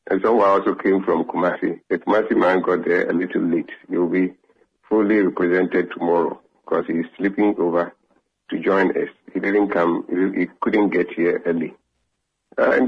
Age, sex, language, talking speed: 50-69, male, English, 170 wpm